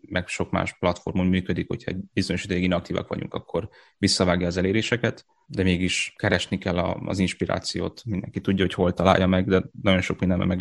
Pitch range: 90-95 Hz